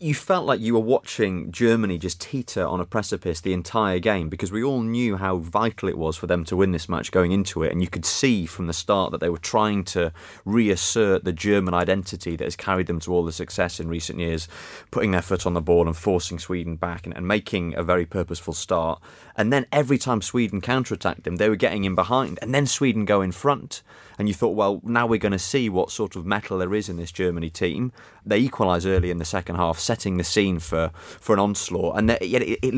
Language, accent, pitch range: English, British, 90-110 Hz